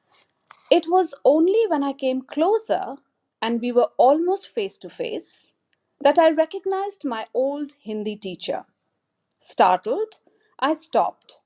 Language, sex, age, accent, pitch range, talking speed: Hindi, female, 50-69, native, 220-335 Hz, 125 wpm